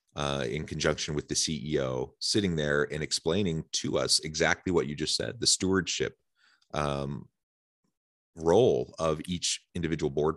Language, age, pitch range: English, 30-49, 70-85 Hz